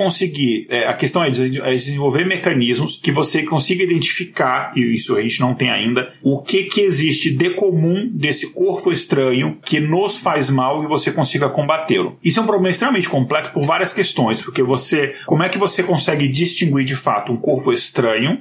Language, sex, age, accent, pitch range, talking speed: Portuguese, male, 40-59, Brazilian, 125-165 Hz, 185 wpm